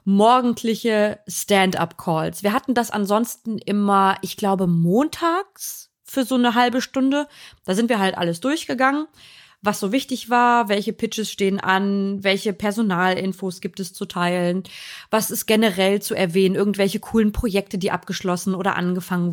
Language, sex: German, female